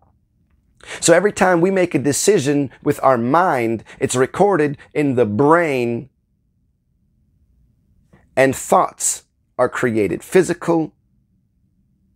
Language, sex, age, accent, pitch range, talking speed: English, male, 30-49, American, 120-165 Hz, 100 wpm